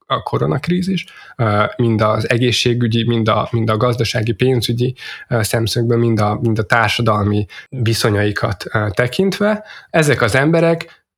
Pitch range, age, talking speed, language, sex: 110-130 Hz, 20-39, 120 wpm, Hungarian, male